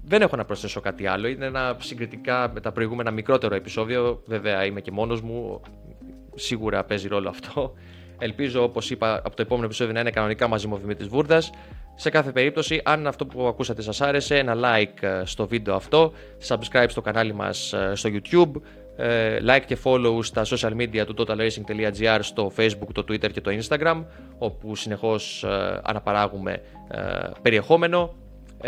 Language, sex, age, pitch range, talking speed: Greek, male, 20-39, 105-130 Hz, 160 wpm